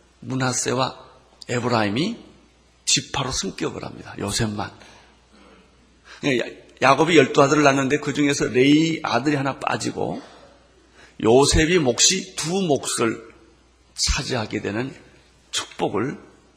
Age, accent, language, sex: 40-59, native, Korean, male